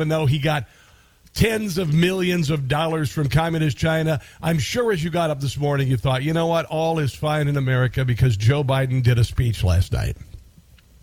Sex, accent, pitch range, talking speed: male, American, 125-175 Hz, 205 wpm